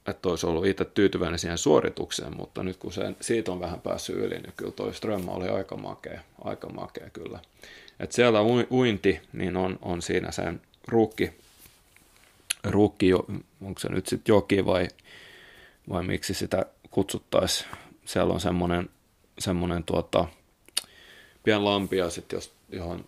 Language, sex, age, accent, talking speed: Finnish, male, 30-49, native, 140 wpm